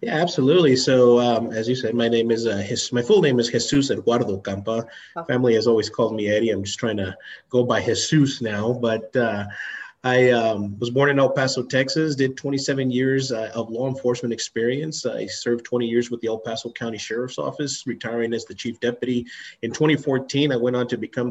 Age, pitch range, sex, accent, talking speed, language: 30-49, 110-130 Hz, male, American, 205 wpm, English